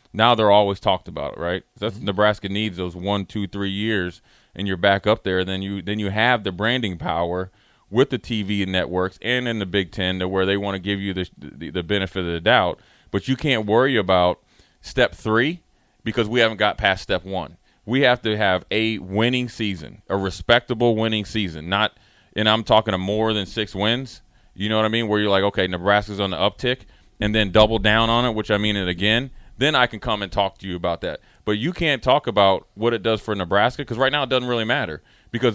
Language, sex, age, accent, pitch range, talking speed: English, male, 30-49, American, 100-120 Hz, 235 wpm